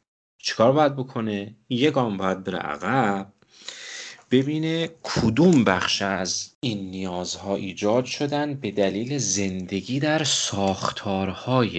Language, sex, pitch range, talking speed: Persian, male, 100-130 Hz, 100 wpm